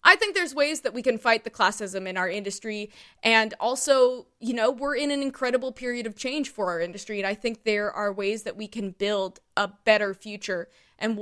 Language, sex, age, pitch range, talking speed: English, female, 20-39, 200-250 Hz, 220 wpm